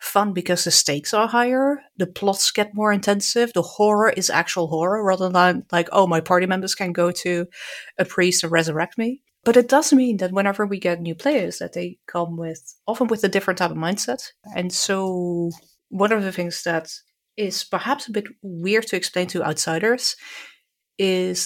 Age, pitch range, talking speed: 30-49, 165-205 Hz, 195 wpm